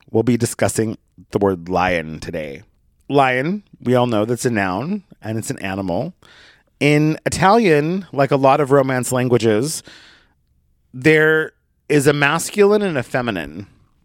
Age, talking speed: 30-49, 140 wpm